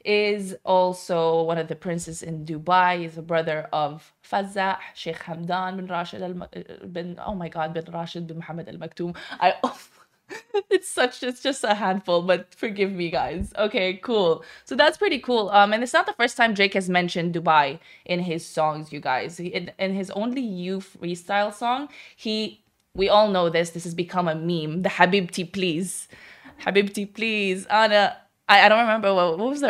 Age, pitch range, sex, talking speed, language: 20-39, 170-210 Hz, female, 185 wpm, Arabic